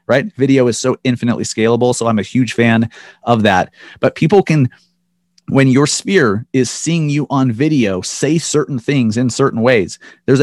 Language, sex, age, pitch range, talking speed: English, male, 30-49, 115-145 Hz, 180 wpm